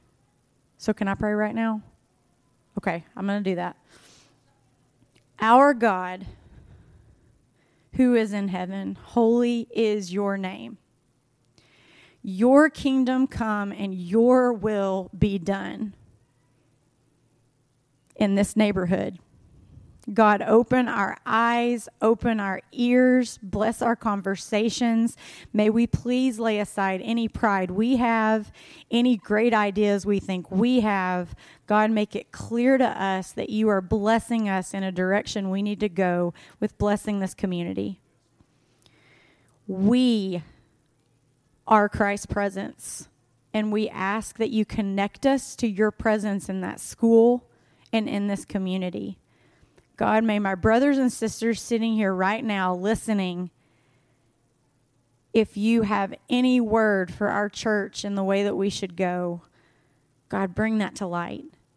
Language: English